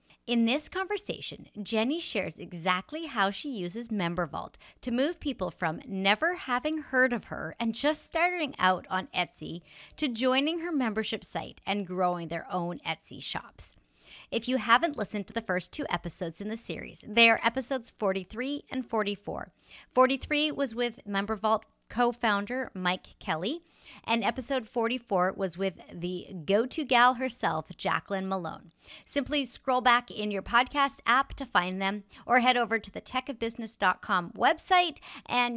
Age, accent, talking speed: 30-49, American, 155 wpm